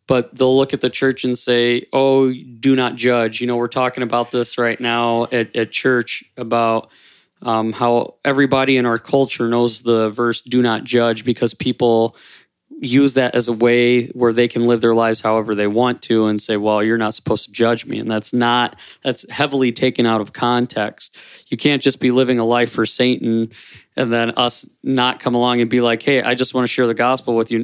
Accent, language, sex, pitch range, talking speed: American, English, male, 115-135 Hz, 215 wpm